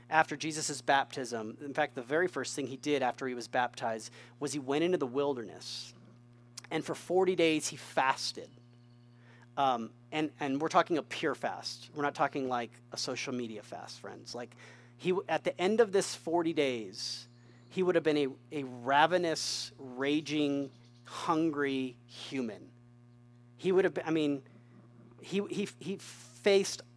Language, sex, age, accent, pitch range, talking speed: English, male, 40-59, American, 120-170 Hz, 160 wpm